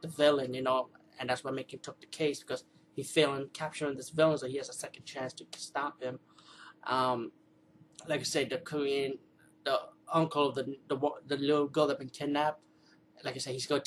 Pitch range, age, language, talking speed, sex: 135-155 Hz, 20-39, English, 210 wpm, male